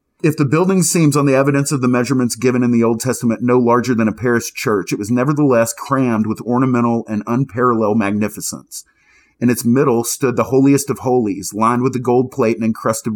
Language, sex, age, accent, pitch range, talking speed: English, male, 40-59, American, 110-135 Hz, 205 wpm